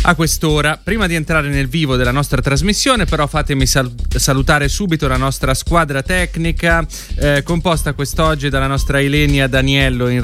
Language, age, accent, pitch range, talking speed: Italian, 30-49, native, 125-165 Hz, 150 wpm